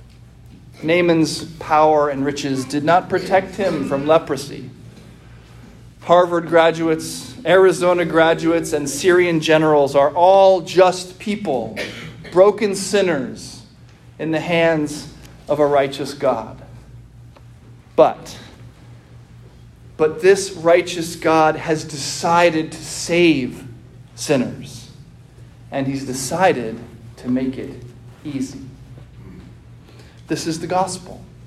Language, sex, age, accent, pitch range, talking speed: English, male, 40-59, American, 130-185 Hz, 95 wpm